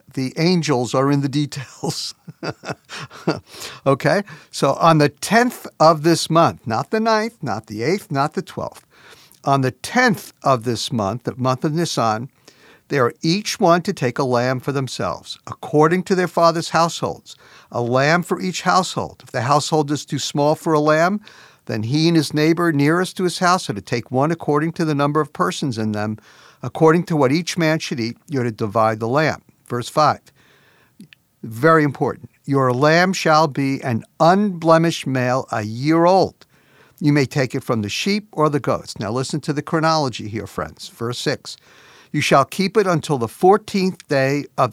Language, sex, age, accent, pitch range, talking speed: English, male, 50-69, American, 130-170 Hz, 185 wpm